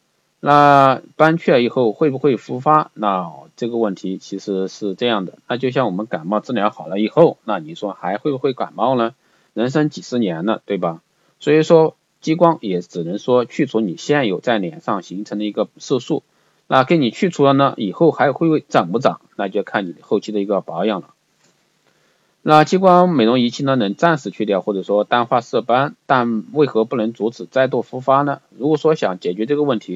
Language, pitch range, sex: Chinese, 105-150 Hz, male